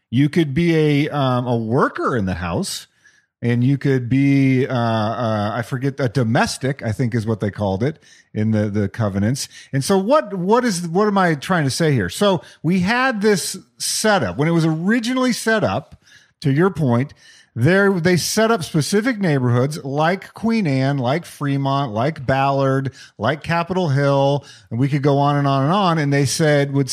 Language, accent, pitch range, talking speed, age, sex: English, American, 135-185 Hz, 185 wpm, 40-59, male